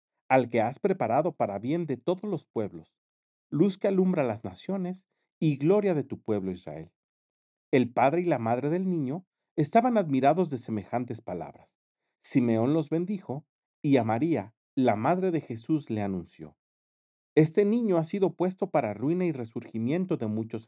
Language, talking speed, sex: Spanish, 165 wpm, male